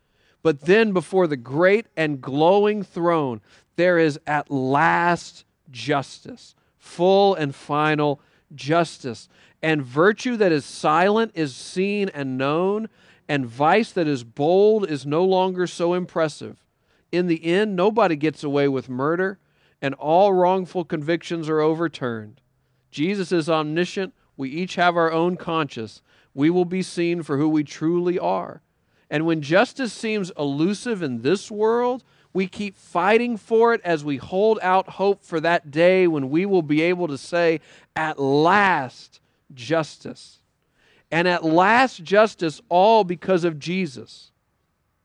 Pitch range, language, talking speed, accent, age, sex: 150-185 Hz, English, 145 wpm, American, 40-59, male